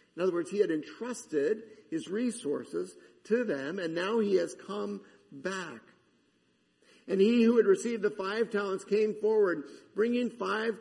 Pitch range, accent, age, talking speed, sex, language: 145-235 Hz, American, 50-69, 155 wpm, male, English